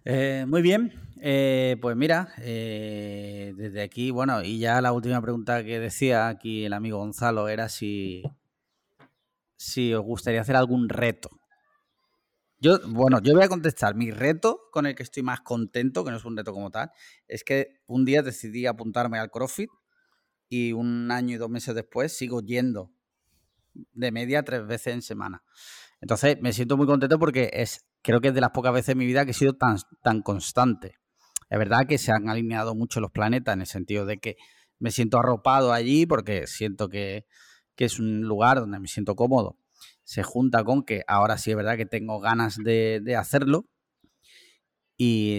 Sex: male